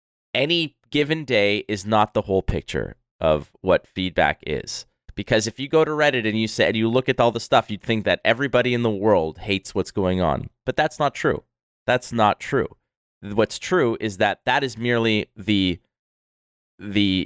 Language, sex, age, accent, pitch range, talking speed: English, male, 30-49, American, 95-125 Hz, 190 wpm